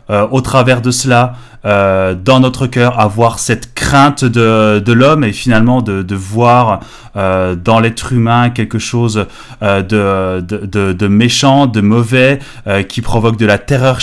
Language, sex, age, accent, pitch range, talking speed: French, male, 30-49, French, 110-140 Hz, 165 wpm